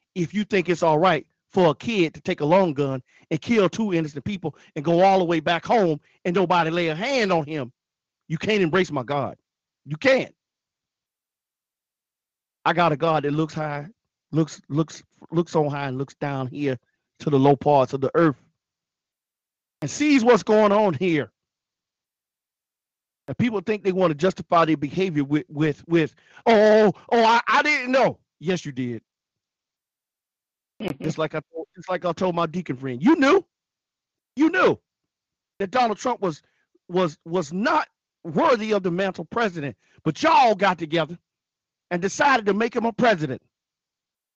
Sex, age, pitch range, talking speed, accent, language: male, 40-59, 155-220 Hz, 175 wpm, American, English